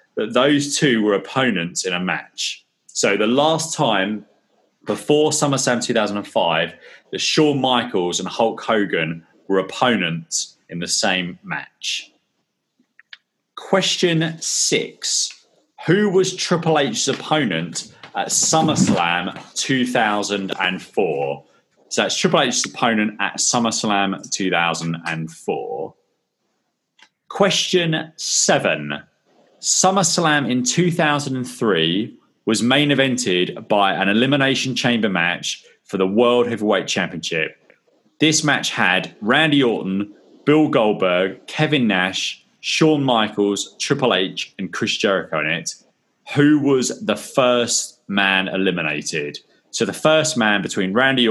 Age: 30-49